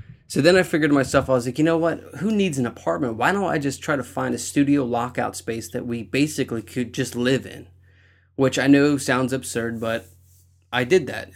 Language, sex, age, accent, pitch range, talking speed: English, male, 20-39, American, 115-130 Hz, 225 wpm